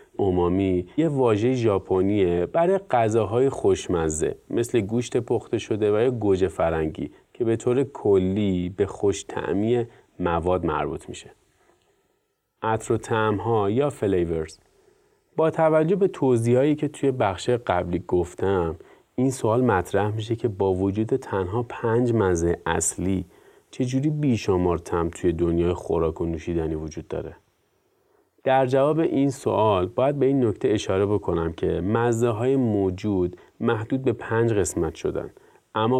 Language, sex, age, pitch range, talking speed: Persian, male, 30-49, 90-120 Hz, 130 wpm